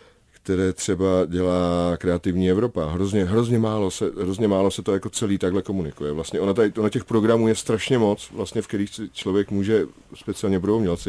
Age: 40-59